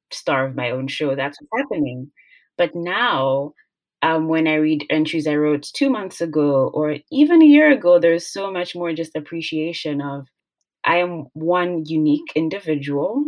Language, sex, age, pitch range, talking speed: English, female, 20-39, 150-205 Hz, 165 wpm